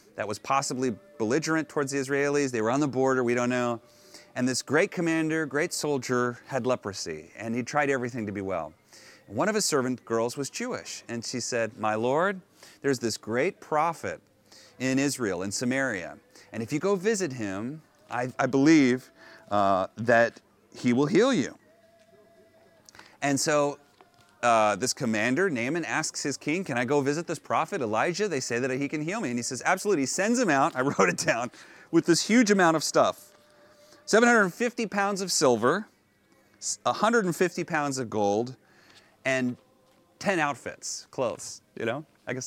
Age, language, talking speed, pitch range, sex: 30-49, Dutch, 170 wpm, 120-165 Hz, male